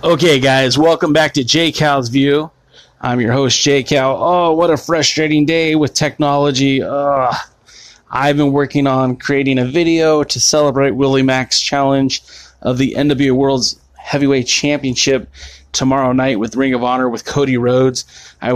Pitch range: 120-140 Hz